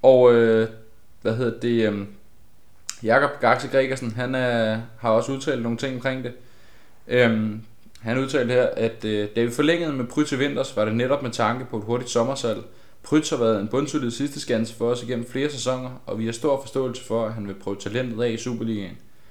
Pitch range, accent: 110-130 Hz, native